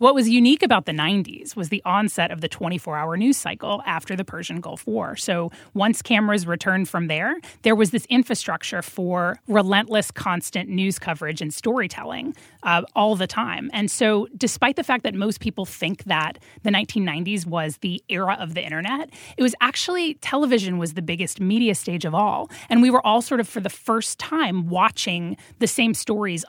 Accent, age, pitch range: American, 30-49, 180-235 Hz